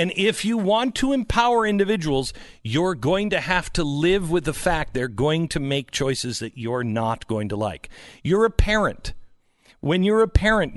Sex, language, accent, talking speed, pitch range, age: male, English, American, 190 wpm, 140-210 Hz, 50-69